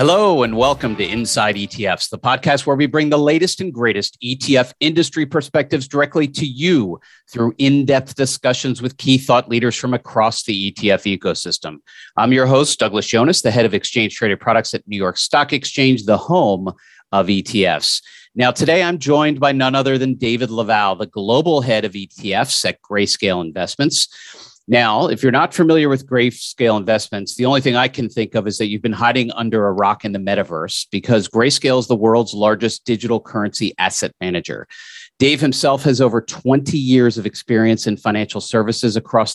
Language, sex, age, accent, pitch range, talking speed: English, male, 40-59, American, 105-135 Hz, 180 wpm